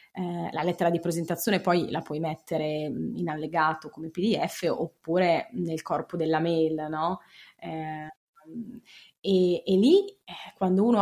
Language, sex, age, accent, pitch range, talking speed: Italian, female, 20-39, native, 165-195 Hz, 125 wpm